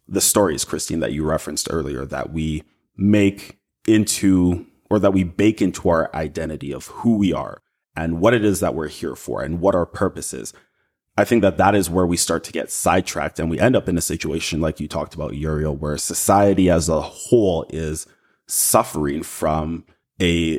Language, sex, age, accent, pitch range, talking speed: English, male, 30-49, American, 80-95 Hz, 195 wpm